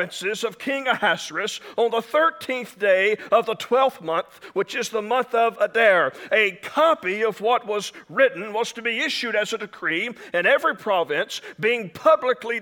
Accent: American